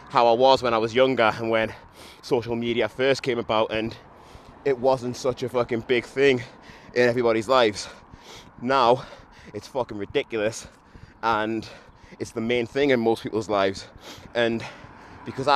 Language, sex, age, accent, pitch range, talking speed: English, male, 20-39, British, 115-135 Hz, 150 wpm